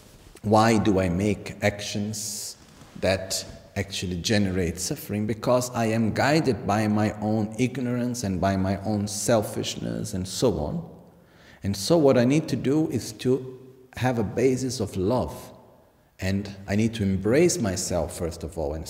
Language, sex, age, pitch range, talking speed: Italian, male, 50-69, 90-115 Hz, 155 wpm